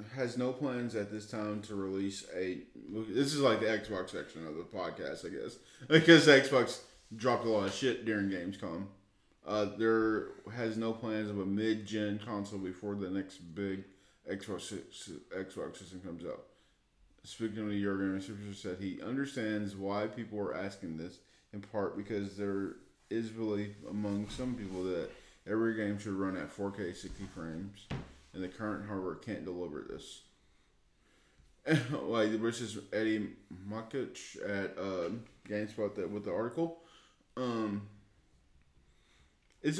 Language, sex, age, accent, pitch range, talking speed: English, male, 20-39, American, 95-110 Hz, 150 wpm